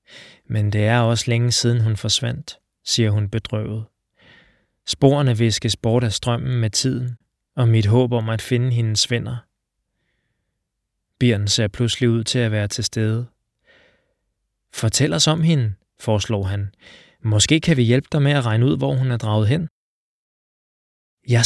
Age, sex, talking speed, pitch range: 20-39, male, 155 wpm, 110-135 Hz